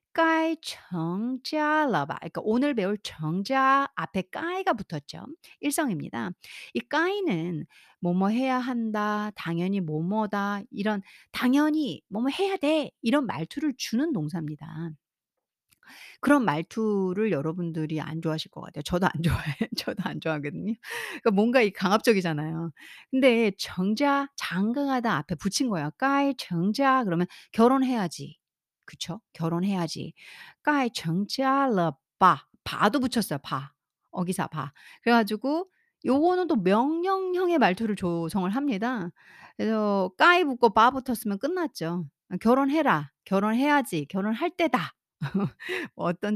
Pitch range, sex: 175-275 Hz, female